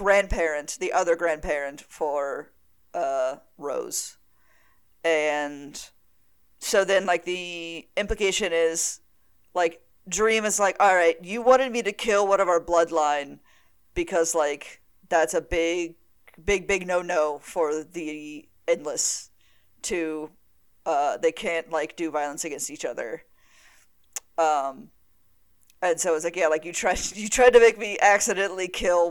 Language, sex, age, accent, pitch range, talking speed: English, female, 40-59, American, 155-200 Hz, 140 wpm